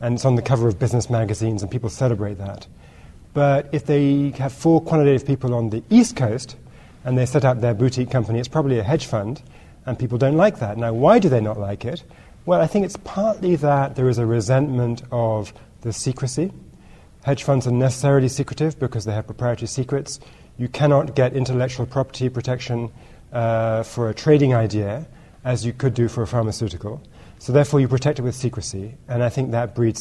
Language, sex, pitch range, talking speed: English, male, 110-140 Hz, 200 wpm